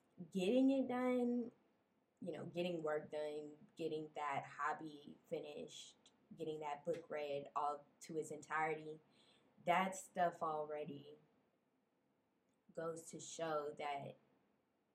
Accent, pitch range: American, 155-200 Hz